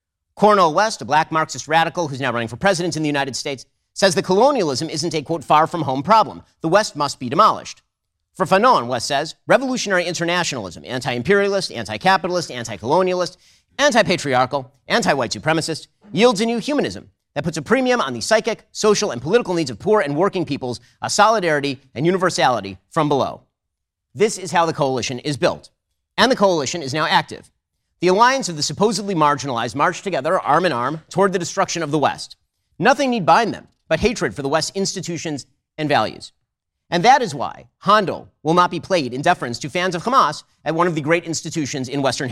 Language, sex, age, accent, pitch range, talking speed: English, male, 40-59, American, 135-195 Hz, 190 wpm